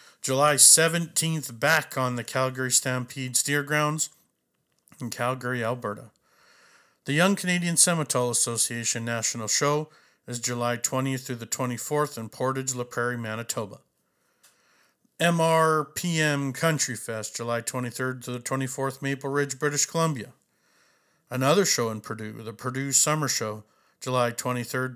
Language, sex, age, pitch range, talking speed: English, male, 50-69, 120-145 Hz, 120 wpm